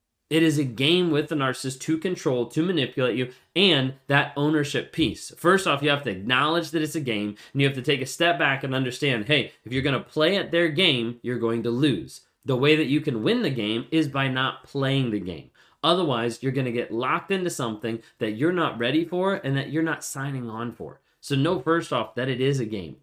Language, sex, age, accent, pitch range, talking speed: English, male, 30-49, American, 125-160 Hz, 240 wpm